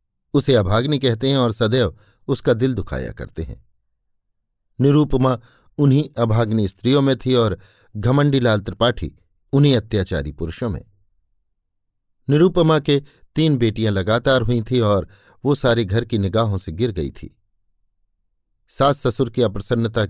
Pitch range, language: 105-135 Hz, Hindi